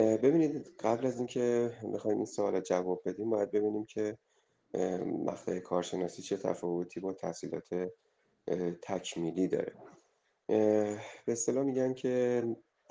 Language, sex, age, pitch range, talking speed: Persian, male, 30-49, 95-120 Hz, 110 wpm